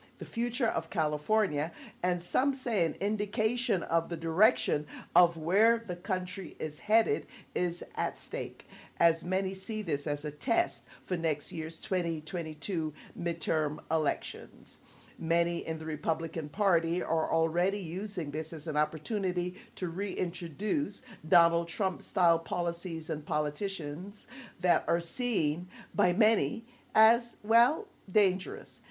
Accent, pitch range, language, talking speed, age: American, 160-205 Hz, English, 125 wpm, 50-69